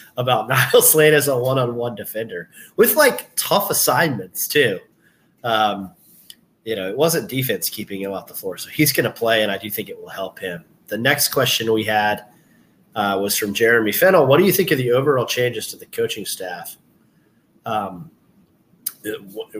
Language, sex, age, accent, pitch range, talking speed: English, male, 30-49, American, 110-145 Hz, 185 wpm